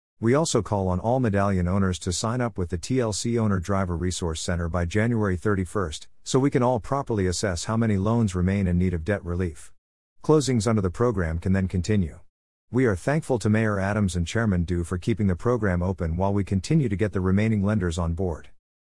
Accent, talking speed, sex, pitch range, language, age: American, 210 wpm, male, 90-115 Hz, English, 50-69